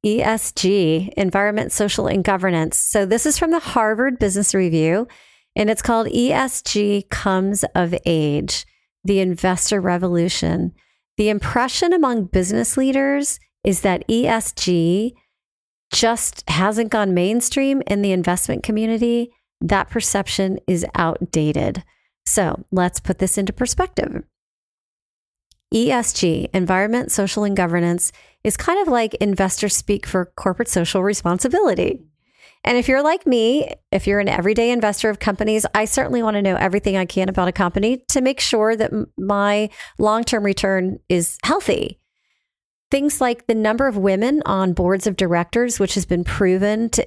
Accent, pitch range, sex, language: American, 190-230 Hz, female, English